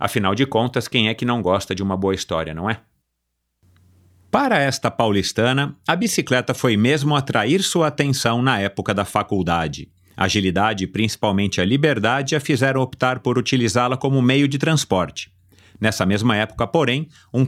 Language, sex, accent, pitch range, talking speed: Portuguese, male, Brazilian, 105-155 Hz, 160 wpm